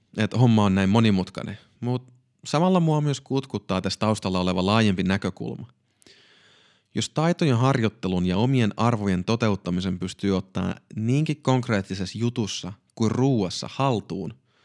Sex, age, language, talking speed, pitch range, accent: male, 30-49, Finnish, 125 wpm, 95-125 Hz, native